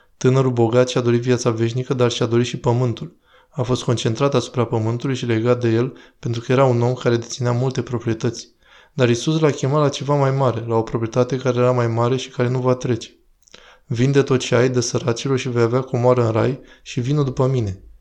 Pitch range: 120-135 Hz